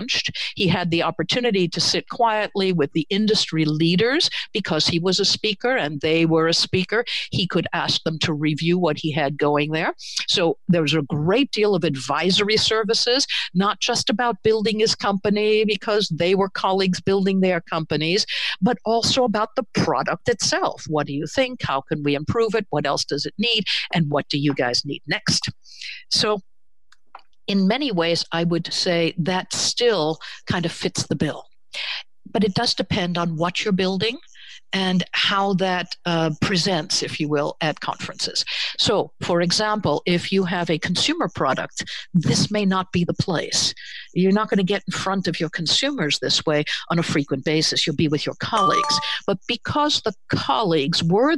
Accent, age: American, 60-79